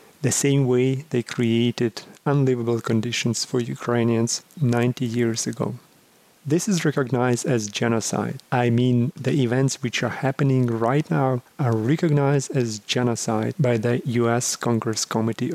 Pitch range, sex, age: 120-140 Hz, male, 40-59